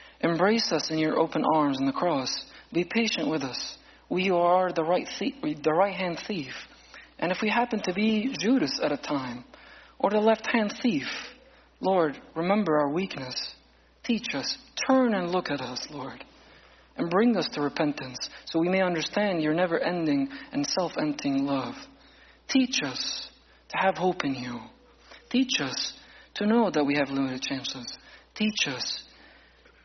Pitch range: 145-195 Hz